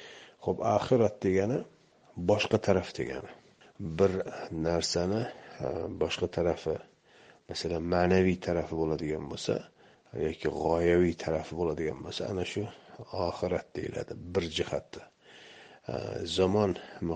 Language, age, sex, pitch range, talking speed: Russian, 60-79, male, 85-95 Hz, 60 wpm